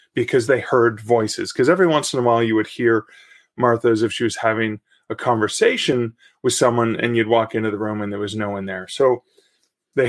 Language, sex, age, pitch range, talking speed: English, male, 30-49, 120-180 Hz, 220 wpm